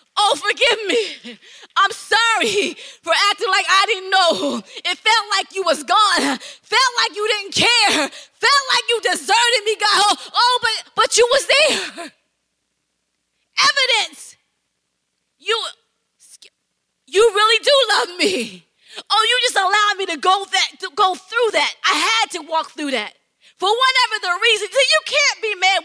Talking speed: 160 wpm